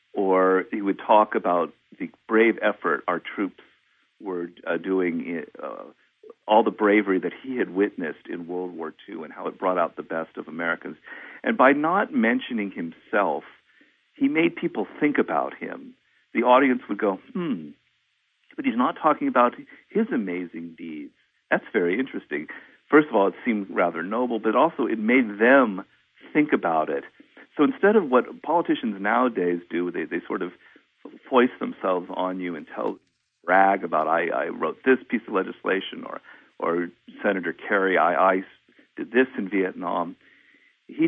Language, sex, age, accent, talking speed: English, male, 50-69, American, 165 wpm